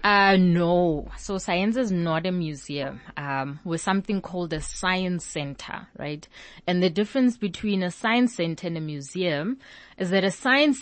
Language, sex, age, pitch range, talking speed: English, female, 20-39, 155-190 Hz, 165 wpm